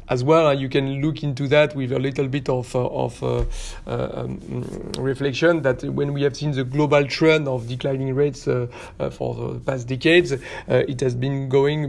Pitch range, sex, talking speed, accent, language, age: 125-140 Hz, male, 200 wpm, French, French, 40-59